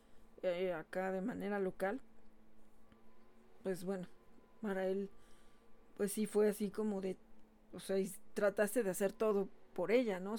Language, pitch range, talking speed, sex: Spanish, 185-210 Hz, 140 wpm, female